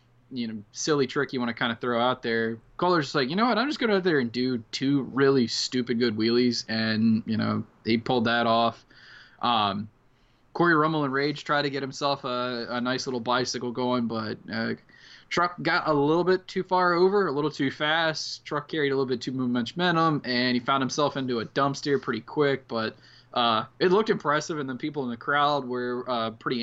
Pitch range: 120-145 Hz